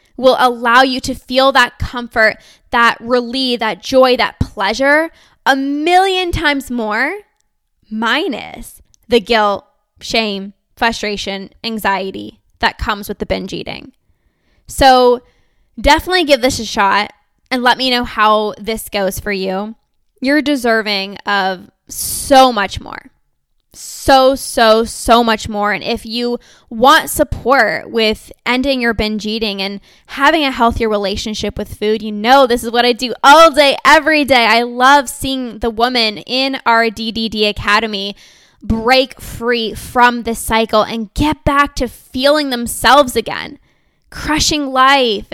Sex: female